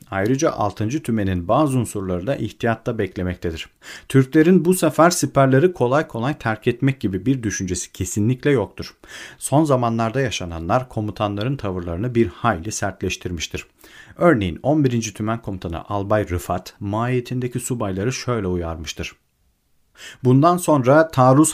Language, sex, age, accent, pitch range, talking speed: Turkish, male, 40-59, native, 100-135 Hz, 115 wpm